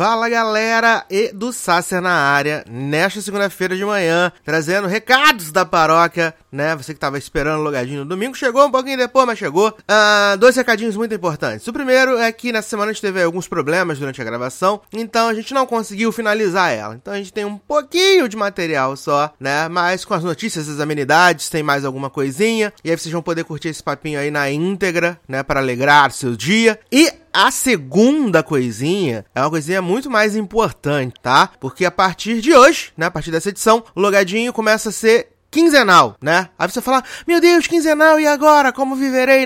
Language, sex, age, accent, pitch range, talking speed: Portuguese, male, 20-39, Brazilian, 155-225 Hz, 200 wpm